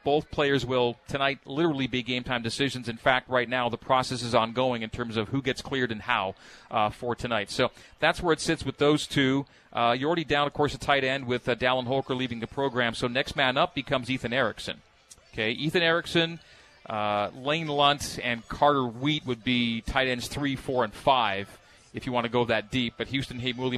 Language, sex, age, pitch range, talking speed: English, male, 40-59, 120-140 Hz, 215 wpm